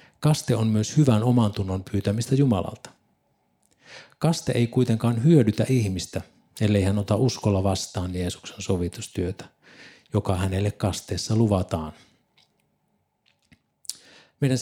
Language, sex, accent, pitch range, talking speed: Finnish, male, native, 100-125 Hz, 105 wpm